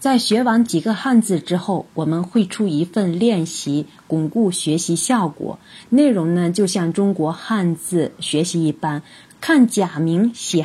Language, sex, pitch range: Chinese, female, 155-230 Hz